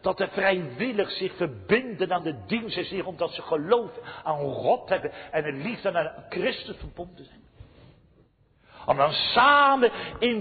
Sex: male